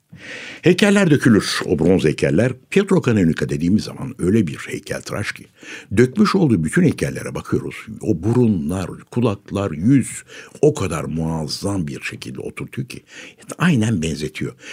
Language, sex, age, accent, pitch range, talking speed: Turkish, male, 60-79, native, 75-115 Hz, 130 wpm